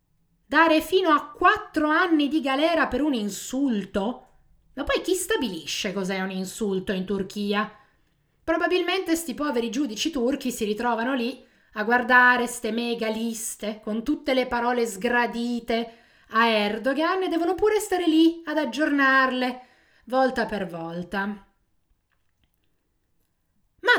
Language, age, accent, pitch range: Italian, 30-49, native, 215-310 Hz